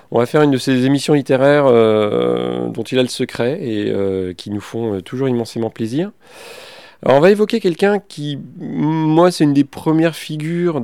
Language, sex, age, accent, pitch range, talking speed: French, male, 40-59, French, 105-145 Hz, 190 wpm